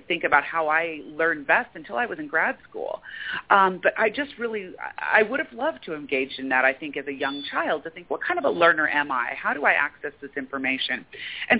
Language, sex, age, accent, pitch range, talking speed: English, female, 40-59, American, 145-200 Hz, 245 wpm